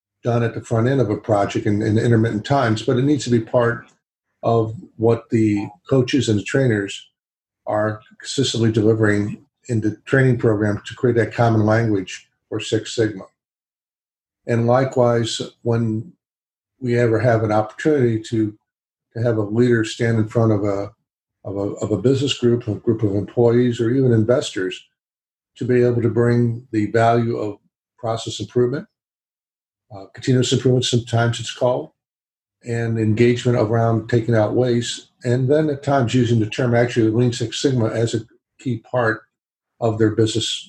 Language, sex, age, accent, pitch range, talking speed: English, male, 50-69, American, 110-125 Hz, 165 wpm